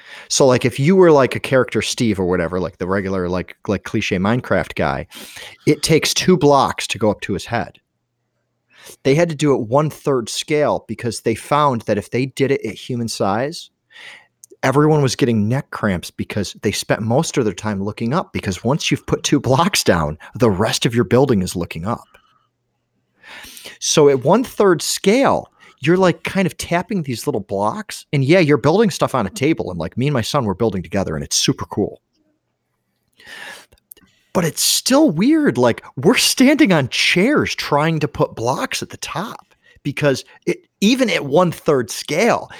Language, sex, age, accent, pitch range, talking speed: English, male, 30-49, American, 110-165 Hz, 185 wpm